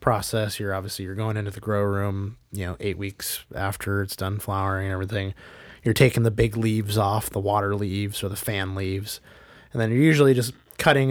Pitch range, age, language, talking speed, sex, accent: 100-120 Hz, 20-39, English, 205 wpm, male, American